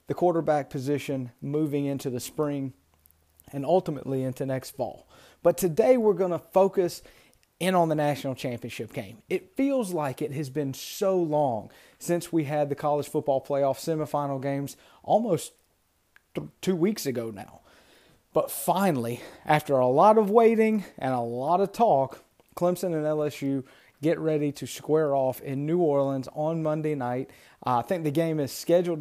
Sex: male